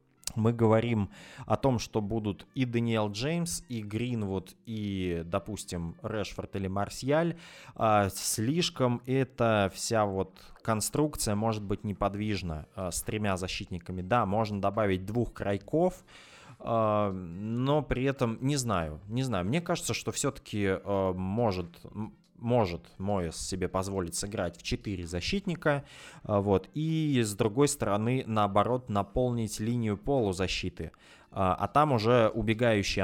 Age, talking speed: 20-39, 120 wpm